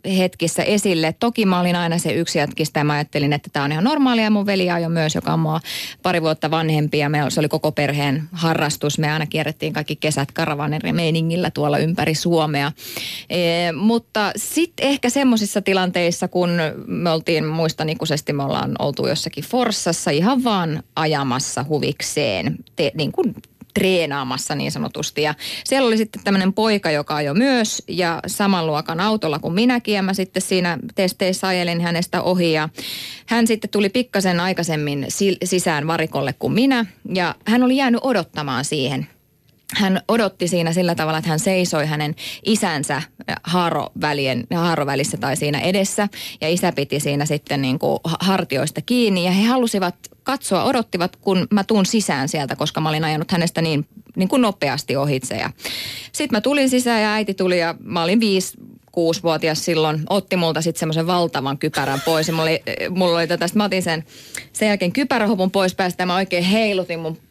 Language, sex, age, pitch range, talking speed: Finnish, female, 20-39, 155-200 Hz, 165 wpm